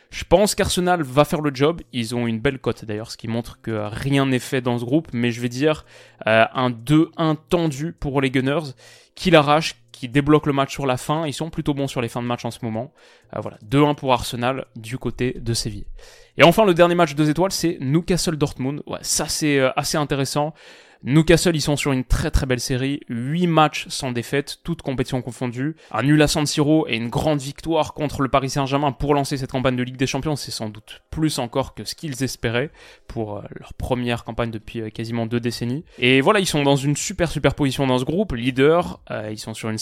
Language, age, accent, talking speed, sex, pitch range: French, 20-39, French, 230 wpm, male, 120-155 Hz